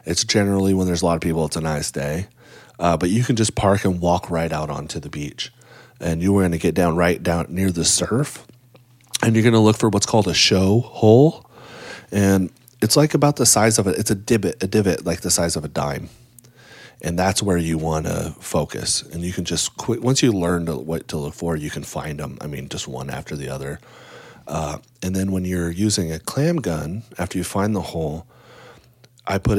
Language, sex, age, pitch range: English, male, 30-49, 80-110 Hz